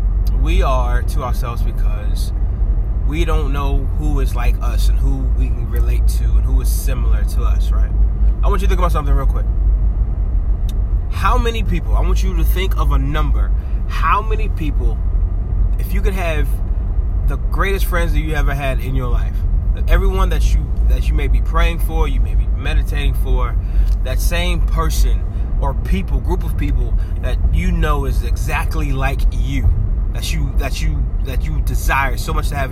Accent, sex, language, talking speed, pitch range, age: American, male, English, 185 wpm, 75-95 Hz, 20-39